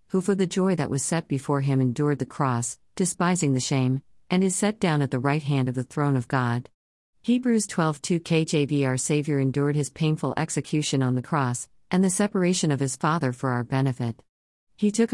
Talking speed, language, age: 205 wpm, English, 50-69